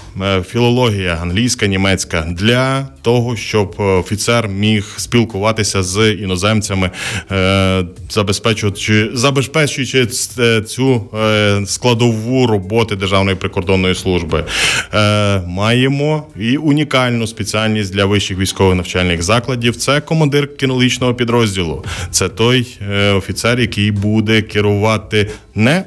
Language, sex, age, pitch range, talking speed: Ukrainian, male, 20-39, 95-120 Hz, 95 wpm